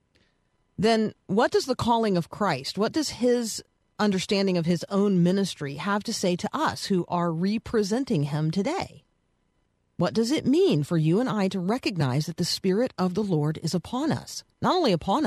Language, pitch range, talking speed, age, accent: English, 160-220 Hz, 185 wpm, 40-59, American